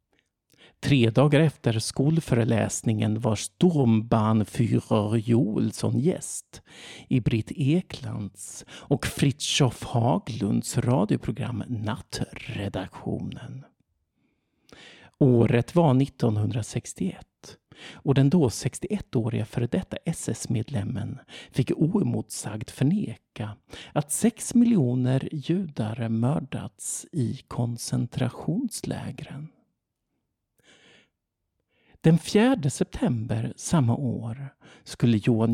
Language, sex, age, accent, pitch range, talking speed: Swedish, male, 50-69, native, 115-155 Hz, 75 wpm